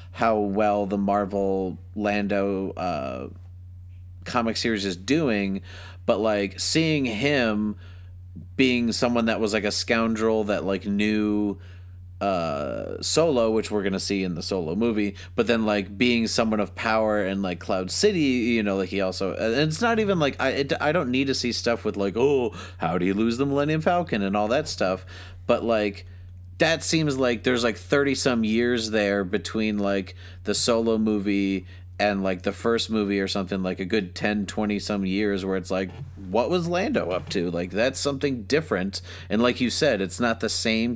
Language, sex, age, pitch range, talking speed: English, male, 30-49, 95-115 Hz, 190 wpm